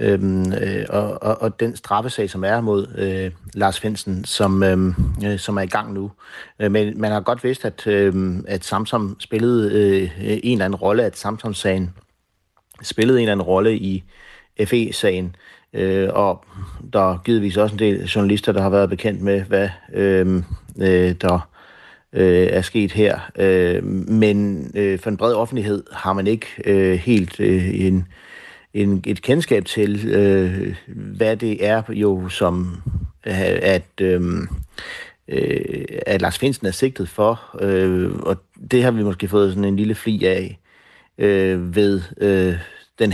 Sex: male